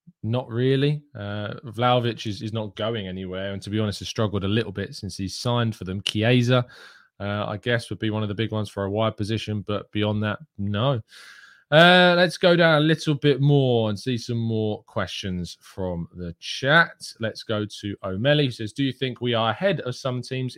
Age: 20-39